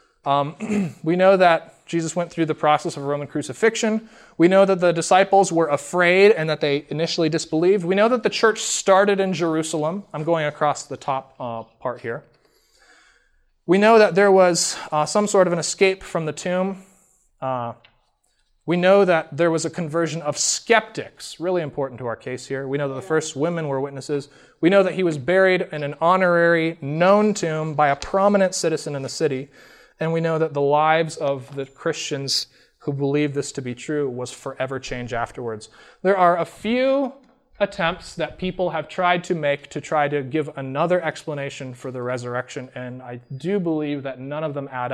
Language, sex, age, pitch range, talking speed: English, male, 30-49, 140-185 Hz, 190 wpm